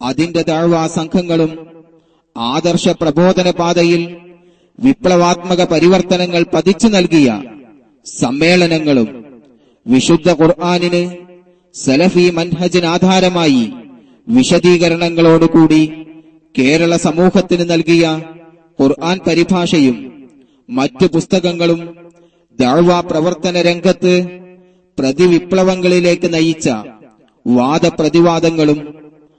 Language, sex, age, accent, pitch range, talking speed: Malayalam, male, 30-49, native, 160-175 Hz, 60 wpm